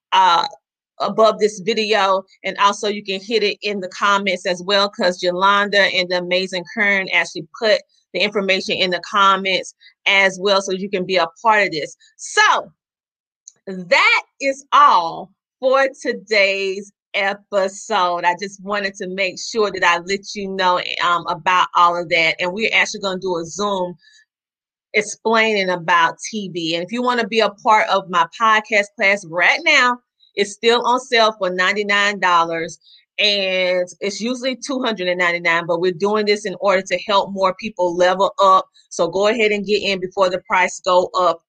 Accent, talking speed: American, 170 wpm